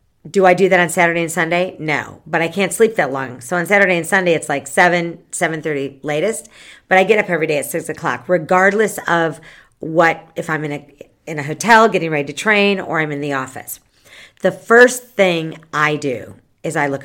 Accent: American